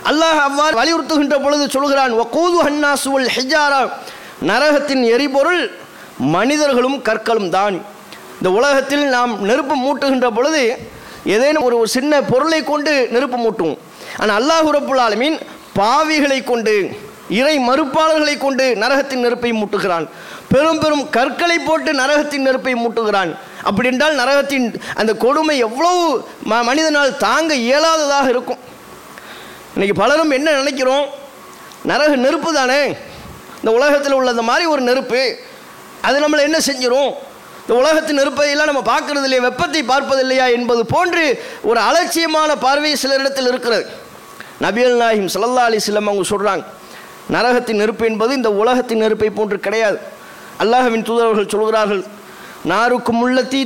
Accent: Indian